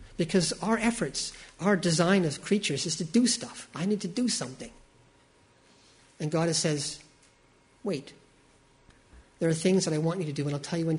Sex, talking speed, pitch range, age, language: male, 185 wpm, 130-175 Hz, 50-69, English